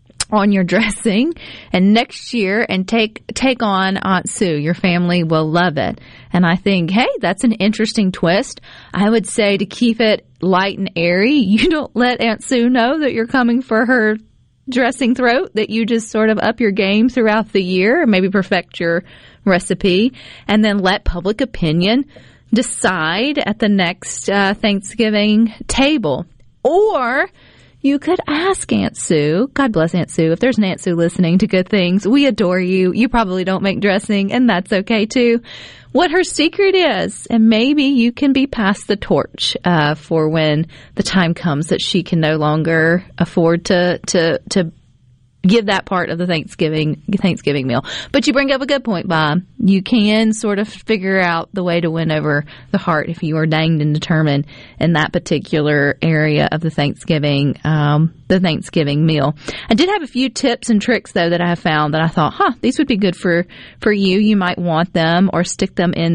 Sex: female